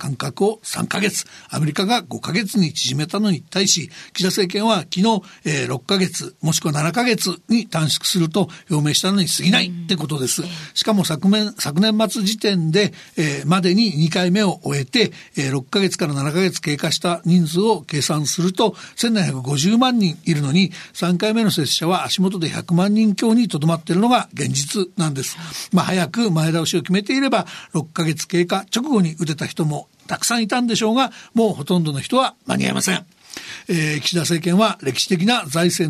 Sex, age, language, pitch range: male, 60-79, Japanese, 165-210 Hz